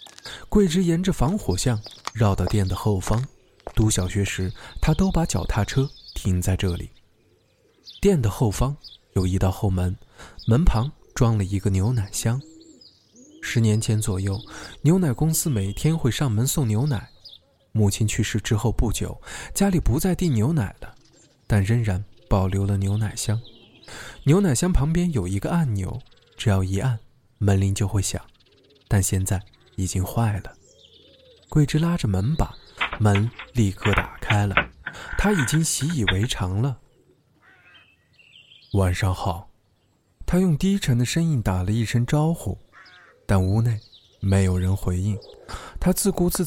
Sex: male